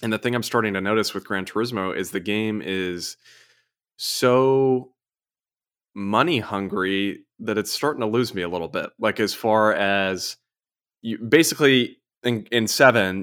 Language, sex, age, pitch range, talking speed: English, male, 20-39, 95-110 Hz, 160 wpm